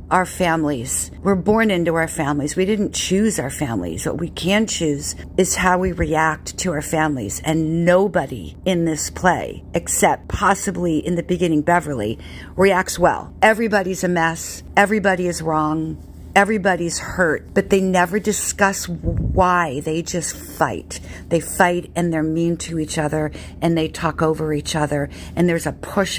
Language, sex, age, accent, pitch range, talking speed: English, female, 50-69, American, 165-200 Hz, 160 wpm